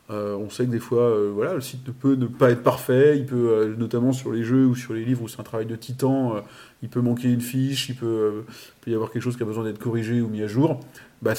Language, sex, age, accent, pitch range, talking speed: French, male, 30-49, French, 110-135 Hz, 305 wpm